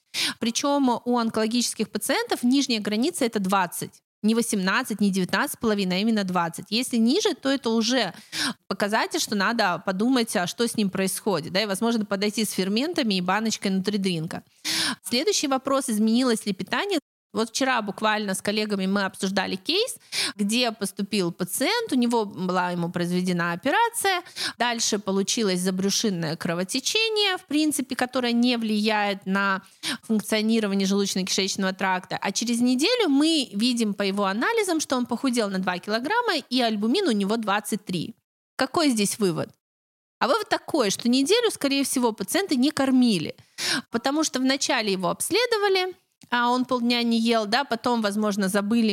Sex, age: female, 20-39